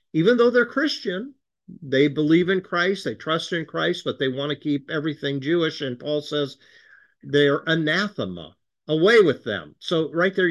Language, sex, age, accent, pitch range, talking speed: English, male, 50-69, American, 130-175 Hz, 170 wpm